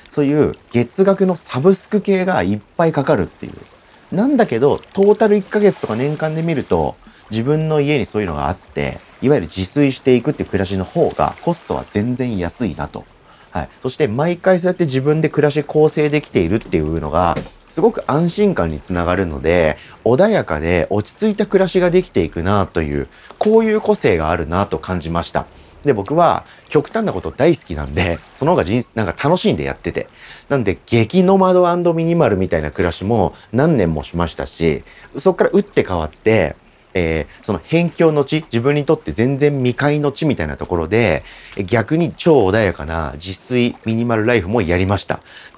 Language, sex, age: Japanese, male, 30-49